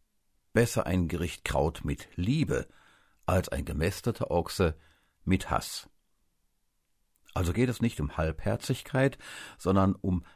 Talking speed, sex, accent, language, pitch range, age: 115 wpm, male, German, German, 80-120 Hz, 50-69